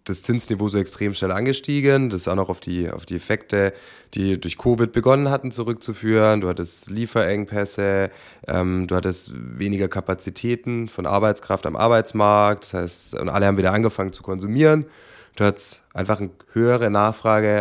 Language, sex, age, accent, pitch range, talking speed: German, male, 20-39, German, 95-120 Hz, 165 wpm